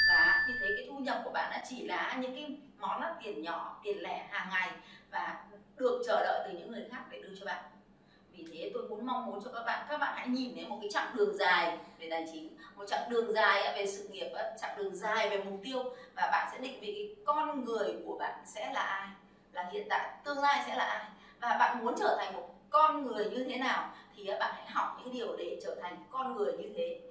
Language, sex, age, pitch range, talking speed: Vietnamese, female, 20-39, 205-295 Hz, 250 wpm